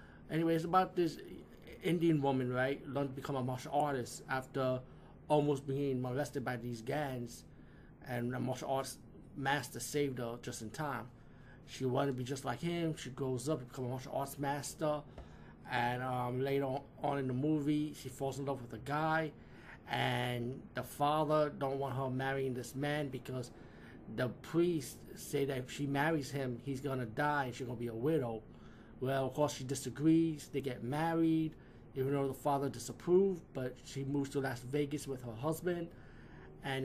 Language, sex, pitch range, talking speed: English, male, 125-145 Hz, 180 wpm